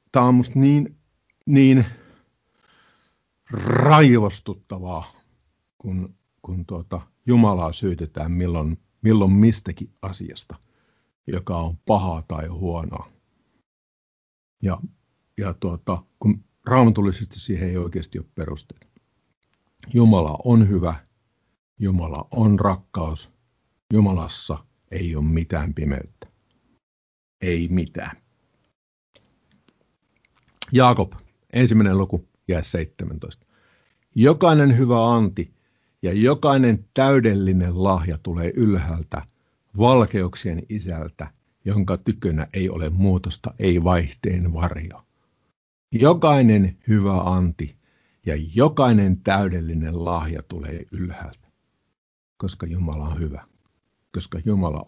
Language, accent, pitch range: Finnish, native, 85-110 Hz